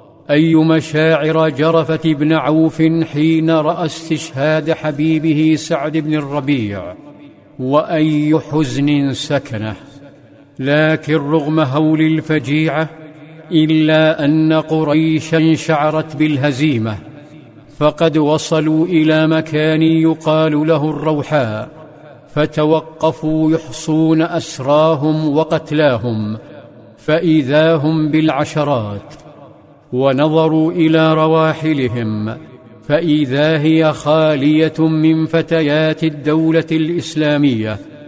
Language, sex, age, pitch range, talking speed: Arabic, male, 50-69, 145-160 Hz, 75 wpm